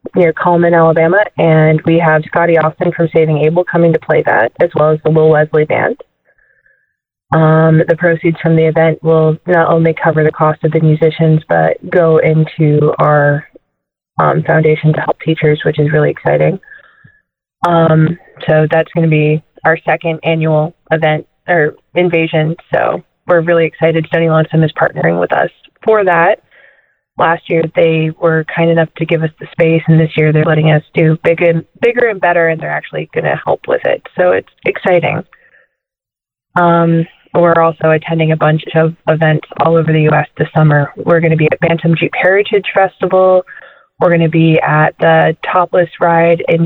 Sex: female